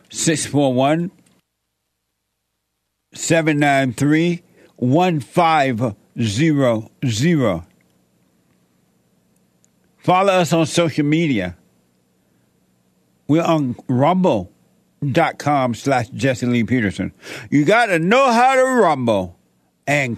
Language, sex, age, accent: English, male, 60-79, American